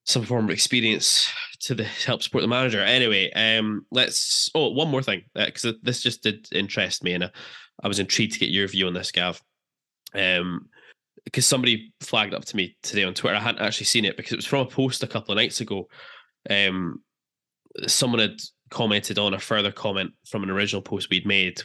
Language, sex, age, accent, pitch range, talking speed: English, male, 10-29, British, 95-120 Hz, 210 wpm